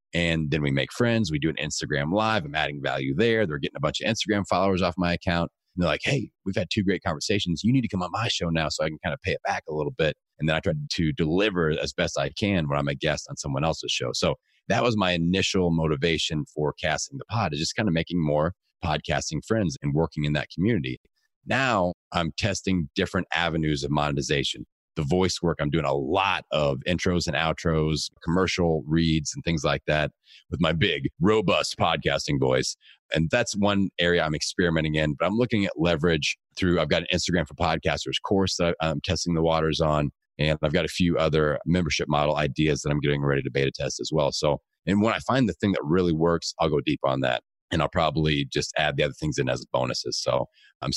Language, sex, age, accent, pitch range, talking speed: English, male, 30-49, American, 75-90 Hz, 230 wpm